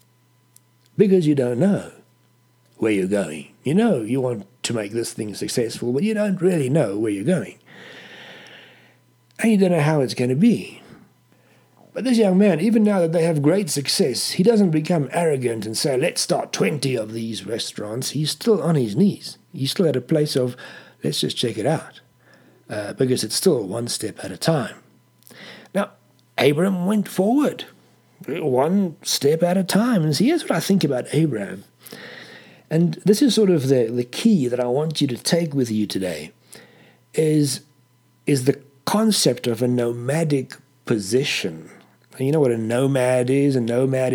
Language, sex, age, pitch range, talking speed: English, male, 60-79, 120-170 Hz, 180 wpm